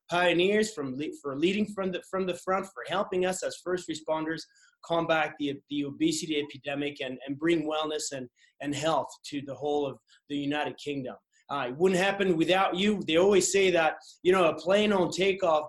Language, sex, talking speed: English, male, 190 wpm